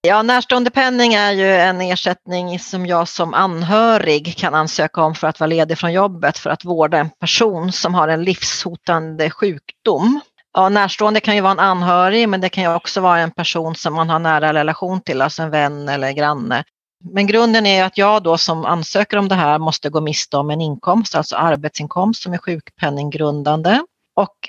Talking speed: 195 wpm